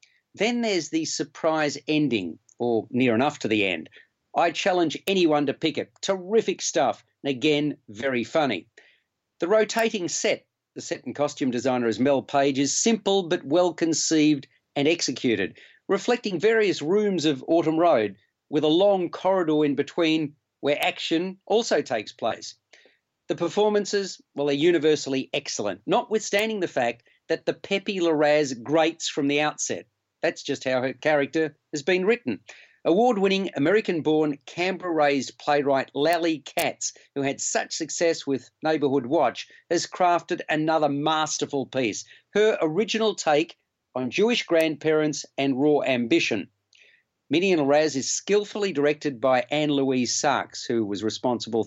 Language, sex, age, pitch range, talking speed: English, male, 40-59, 140-190 Hz, 140 wpm